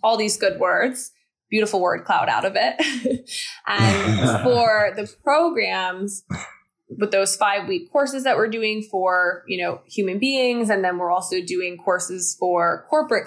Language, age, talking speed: English, 20-39, 160 wpm